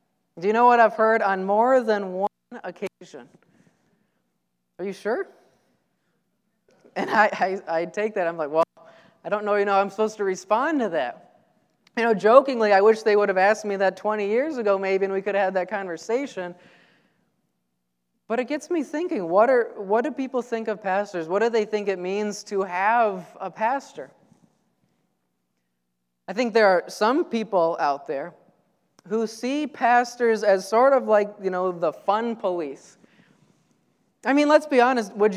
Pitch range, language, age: 190-235 Hz, English, 20-39